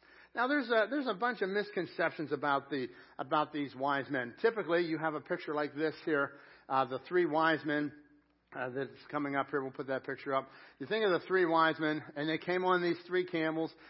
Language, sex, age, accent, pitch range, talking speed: English, male, 60-79, American, 155-185 Hz, 220 wpm